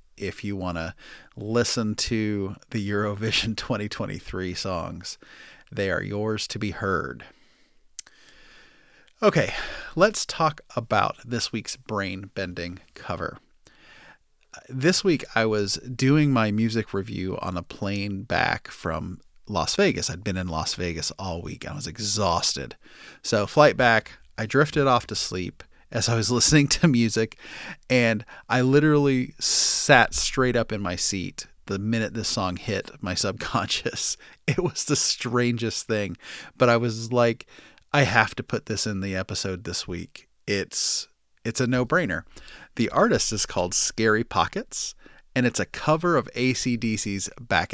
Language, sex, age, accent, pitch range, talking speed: English, male, 30-49, American, 95-120 Hz, 150 wpm